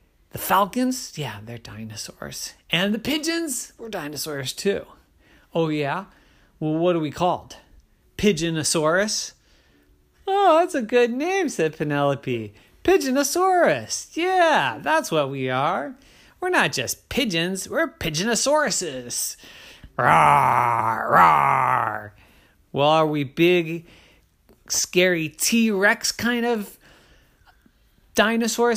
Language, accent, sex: English, American, male